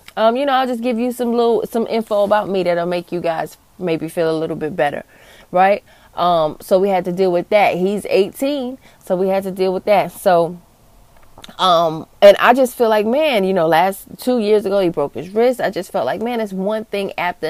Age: 20-39